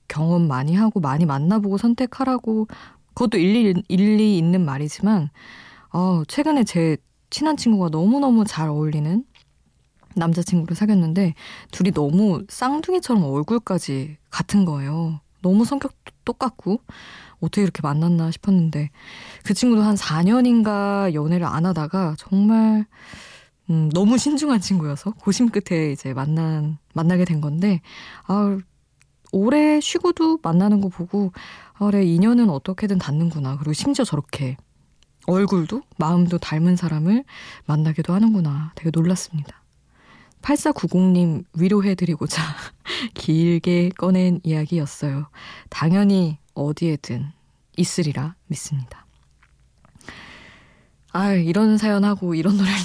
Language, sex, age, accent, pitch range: Korean, female, 20-39, native, 160-210 Hz